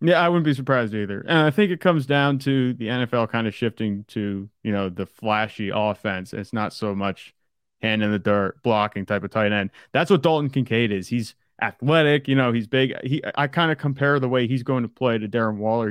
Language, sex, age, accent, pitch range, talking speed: English, male, 30-49, American, 105-130 Hz, 230 wpm